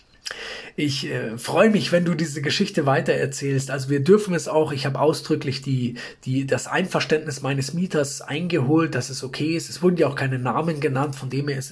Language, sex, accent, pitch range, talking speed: German, male, German, 140-185 Hz, 200 wpm